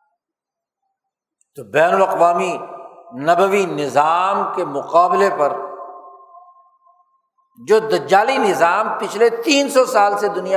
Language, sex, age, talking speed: Urdu, male, 60-79, 95 wpm